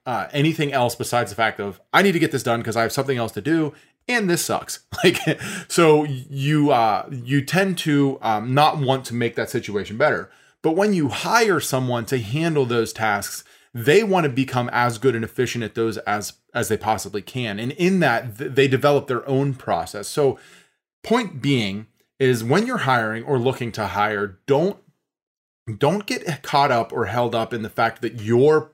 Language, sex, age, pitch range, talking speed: English, male, 30-49, 115-140 Hz, 200 wpm